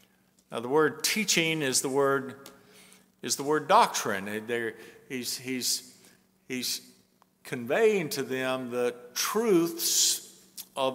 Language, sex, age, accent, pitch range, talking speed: English, male, 50-69, American, 115-145 Hz, 110 wpm